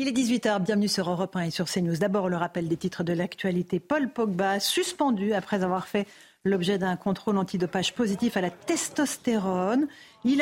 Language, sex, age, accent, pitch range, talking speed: French, female, 50-69, French, 180-220 Hz, 185 wpm